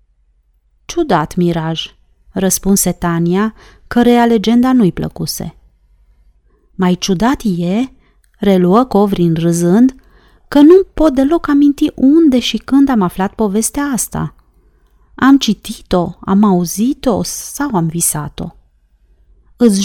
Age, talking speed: 30-49, 105 wpm